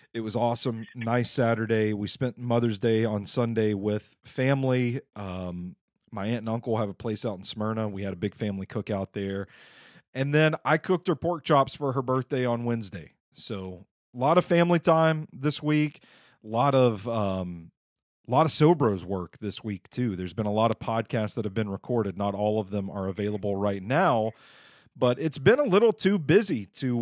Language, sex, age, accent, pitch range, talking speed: English, male, 40-59, American, 105-135 Hz, 195 wpm